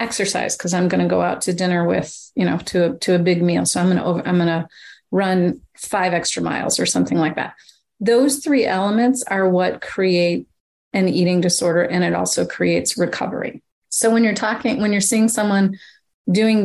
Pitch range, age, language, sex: 180-230 Hz, 30-49, English, female